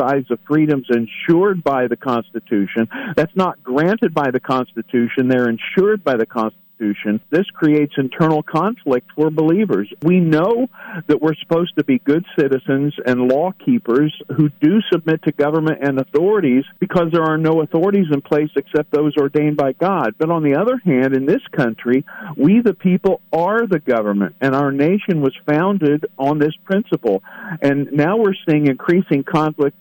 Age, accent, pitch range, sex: 50-69, American, 140-175 Hz, male